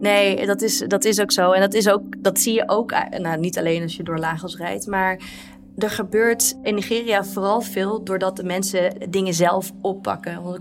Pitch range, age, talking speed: 175-205 Hz, 30-49, 210 wpm